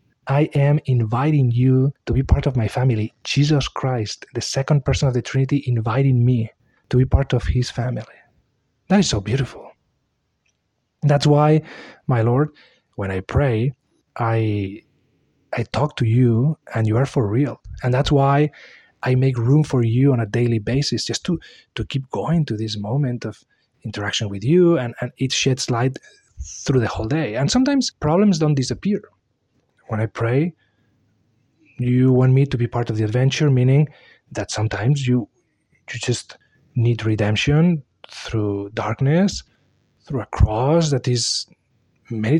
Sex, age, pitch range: male, 30-49, 115-145 Hz